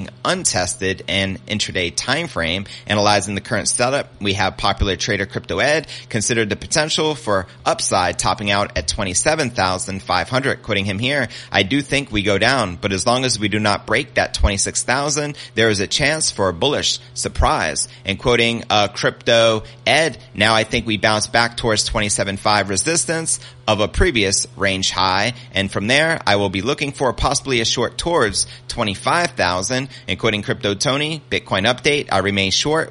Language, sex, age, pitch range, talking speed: English, male, 30-49, 100-125 Hz, 170 wpm